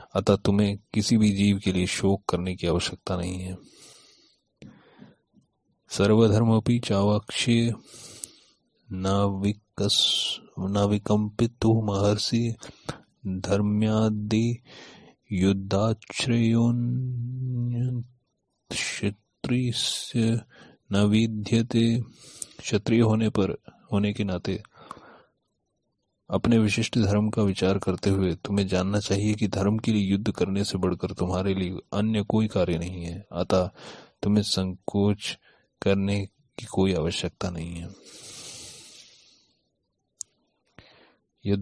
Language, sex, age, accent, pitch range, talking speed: Hindi, male, 30-49, native, 95-110 Hz, 90 wpm